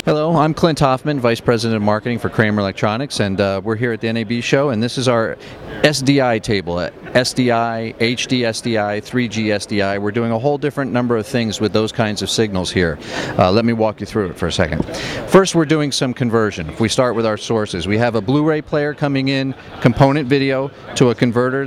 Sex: male